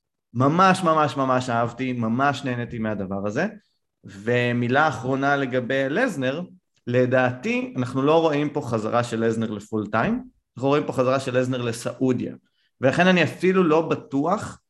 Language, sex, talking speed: English, male, 140 wpm